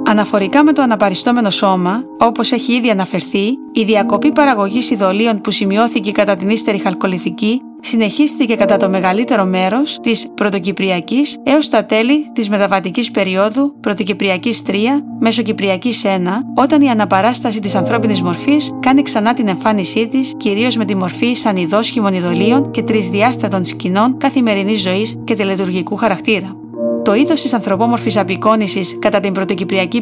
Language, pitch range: Greek, 195-255 Hz